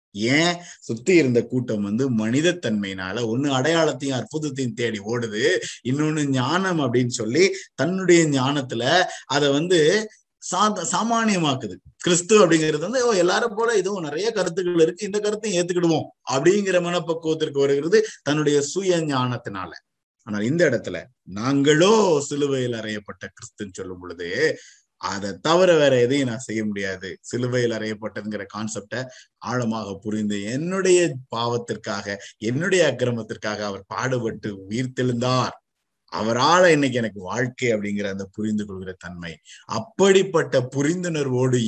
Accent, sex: native, male